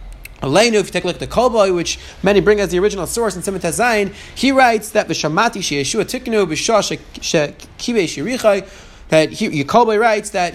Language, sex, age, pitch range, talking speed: English, male, 30-49, 180-235 Hz, 180 wpm